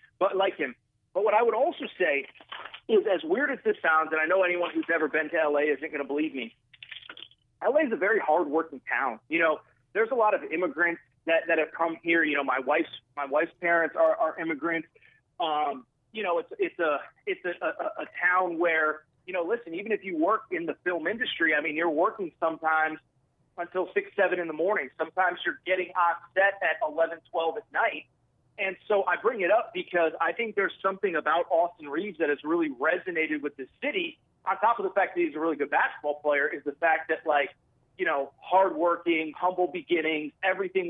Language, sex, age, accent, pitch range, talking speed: English, male, 30-49, American, 155-190 Hz, 215 wpm